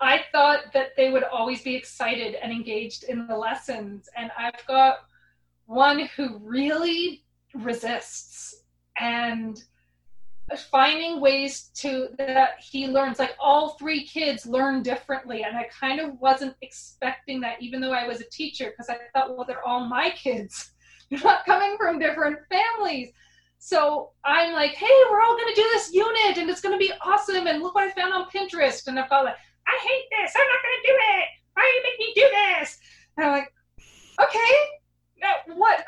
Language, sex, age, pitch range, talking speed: English, female, 20-39, 255-345 Hz, 180 wpm